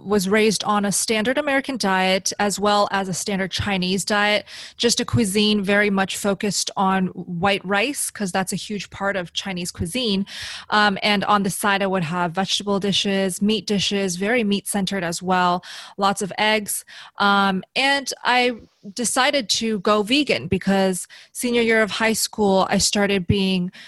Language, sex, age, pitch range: English, female, 20-39, 190-220 Hz